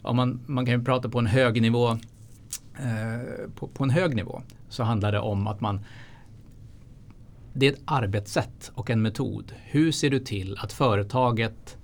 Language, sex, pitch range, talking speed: Swedish, male, 105-125 Hz, 165 wpm